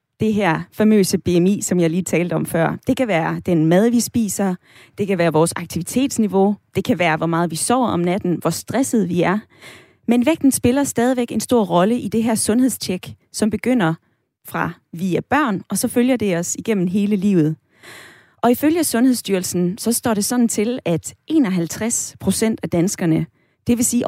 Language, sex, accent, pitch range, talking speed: Danish, female, native, 170-235 Hz, 185 wpm